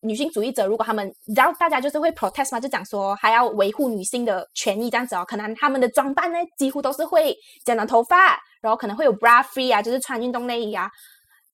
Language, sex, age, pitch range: Chinese, female, 20-39, 220-300 Hz